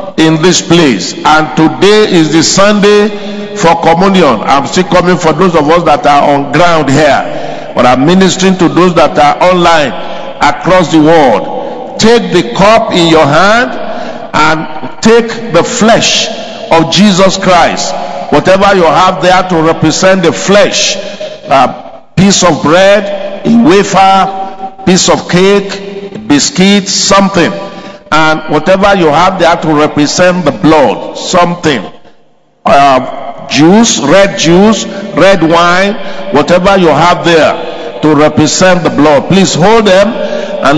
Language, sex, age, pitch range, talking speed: English, male, 50-69, 165-205 Hz, 140 wpm